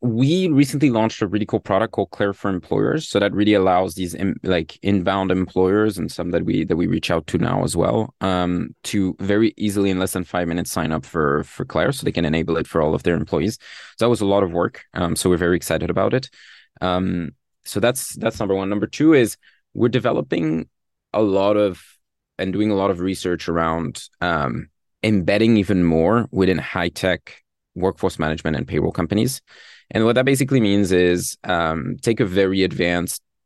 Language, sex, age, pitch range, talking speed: English, male, 20-39, 90-105 Hz, 205 wpm